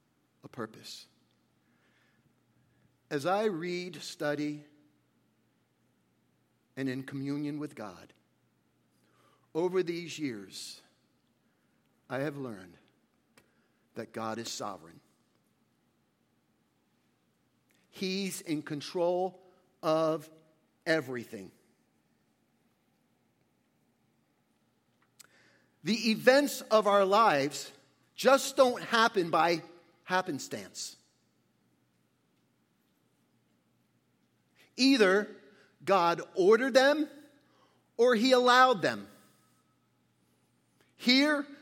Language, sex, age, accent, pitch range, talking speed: English, male, 50-69, American, 150-245 Hz, 65 wpm